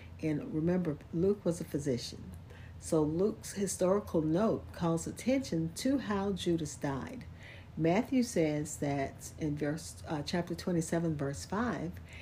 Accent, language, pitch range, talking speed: American, English, 110-180 Hz, 130 wpm